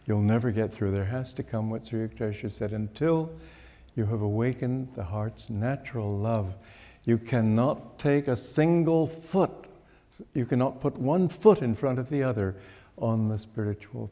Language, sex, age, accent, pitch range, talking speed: English, male, 60-79, American, 110-140 Hz, 165 wpm